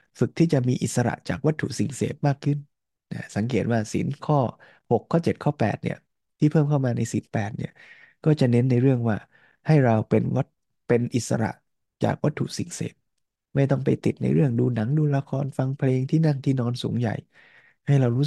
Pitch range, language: 120-145 Hz, Thai